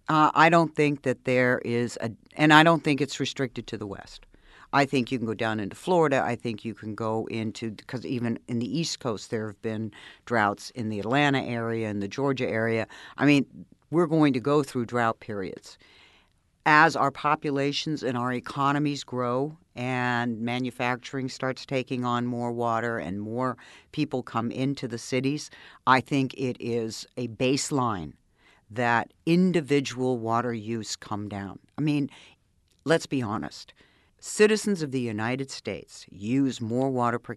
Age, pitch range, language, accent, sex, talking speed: 50-69, 110-145 Hz, English, American, female, 170 wpm